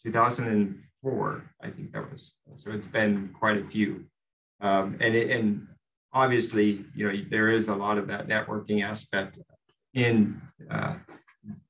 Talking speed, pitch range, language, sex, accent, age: 145 wpm, 100-110 Hz, English, male, American, 40-59